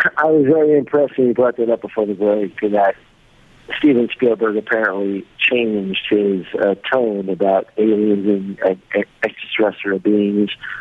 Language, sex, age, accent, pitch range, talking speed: English, male, 50-69, American, 100-115 Hz, 155 wpm